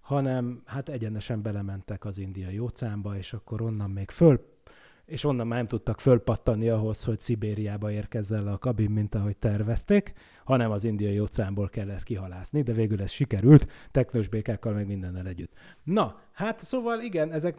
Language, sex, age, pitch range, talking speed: Hungarian, male, 30-49, 105-125 Hz, 160 wpm